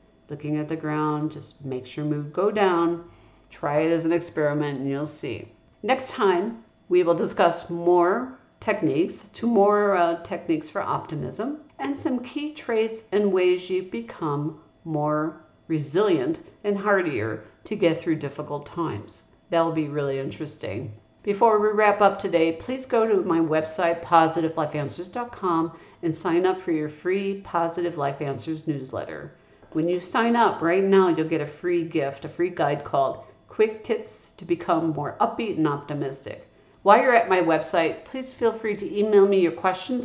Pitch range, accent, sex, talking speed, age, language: 155-200 Hz, American, female, 165 wpm, 50-69, English